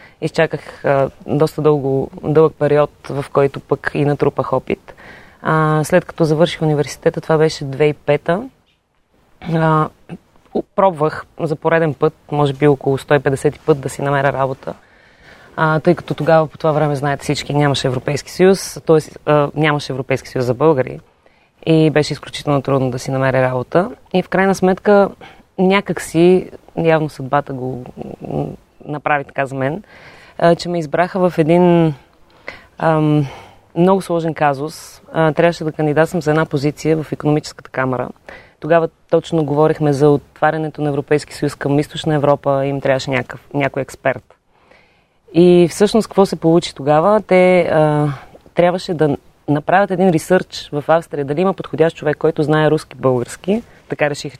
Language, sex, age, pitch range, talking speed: Bulgarian, female, 20-39, 140-165 Hz, 145 wpm